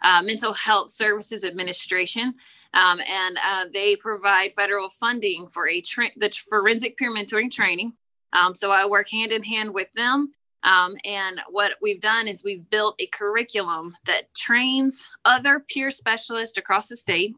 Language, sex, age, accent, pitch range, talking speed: English, female, 20-39, American, 195-240 Hz, 160 wpm